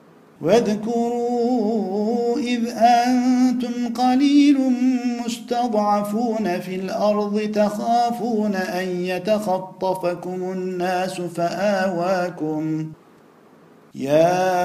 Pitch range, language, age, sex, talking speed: 175-220 Hz, Turkish, 50-69, male, 55 wpm